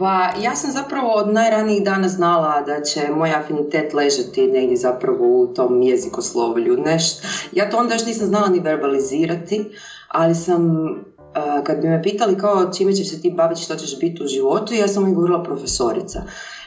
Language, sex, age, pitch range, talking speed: Croatian, female, 20-39, 160-230 Hz, 175 wpm